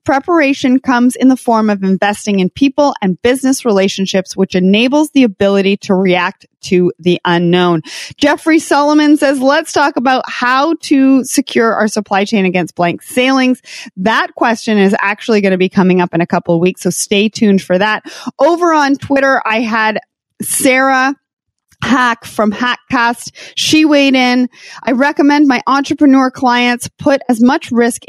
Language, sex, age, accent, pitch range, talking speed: English, female, 30-49, American, 195-265 Hz, 160 wpm